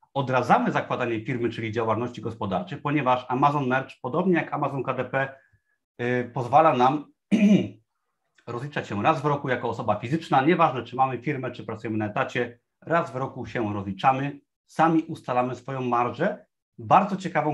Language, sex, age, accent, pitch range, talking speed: Polish, male, 30-49, native, 115-155 Hz, 145 wpm